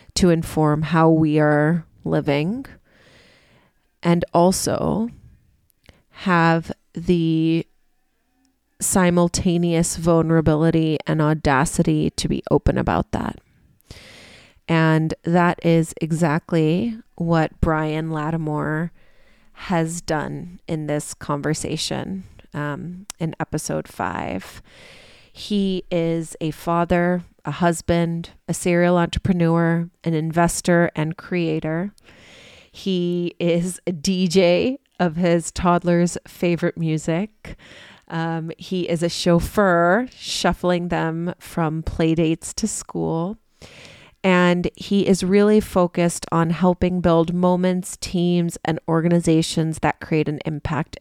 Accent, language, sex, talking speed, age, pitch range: American, English, female, 100 wpm, 30-49, 160-180 Hz